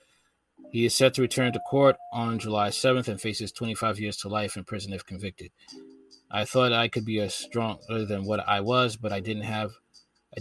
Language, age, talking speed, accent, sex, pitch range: English, 20-39, 200 wpm, American, male, 105-120 Hz